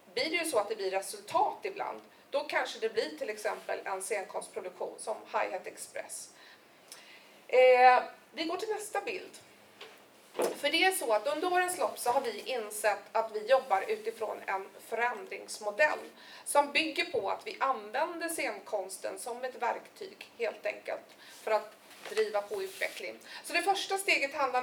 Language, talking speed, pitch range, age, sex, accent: Swedish, 160 wpm, 215-355 Hz, 30-49, female, native